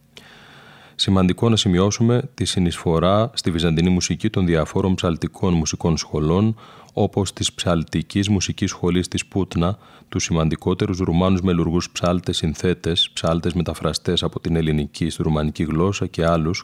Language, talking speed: Greek, 125 wpm